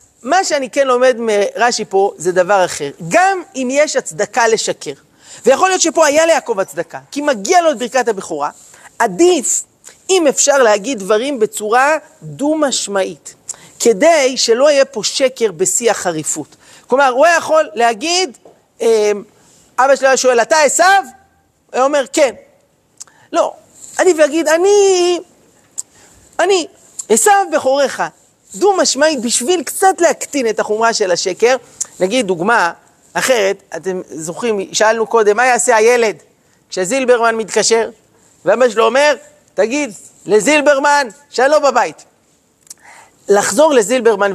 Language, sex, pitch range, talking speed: Hebrew, male, 210-305 Hz, 125 wpm